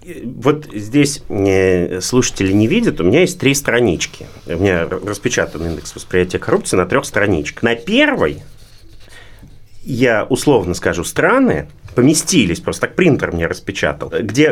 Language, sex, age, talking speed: Russian, male, 30-49, 130 wpm